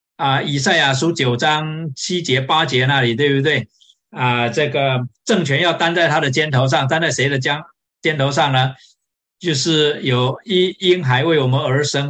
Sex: male